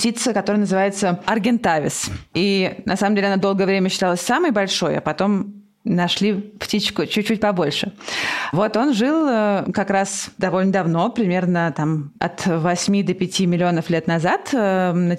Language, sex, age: Russian, female, 20-39